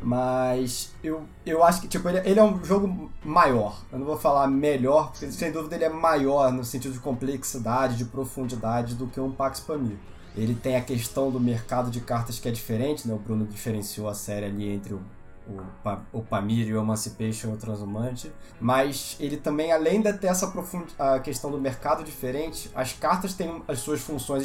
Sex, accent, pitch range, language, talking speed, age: male, Brazilian, 125-185 Hz, Portuguese, 190 wpm, 20-39